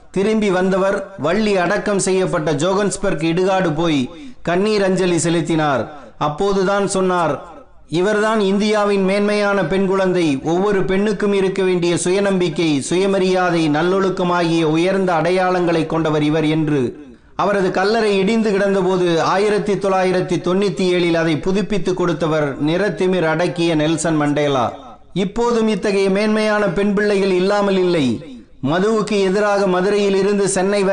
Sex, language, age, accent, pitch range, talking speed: male, Tamil, 30-49, native, 175-200 Hz, 105 wpm